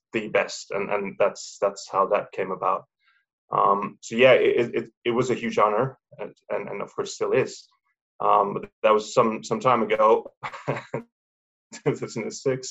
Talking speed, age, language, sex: 165 wpm, 20-39, English, male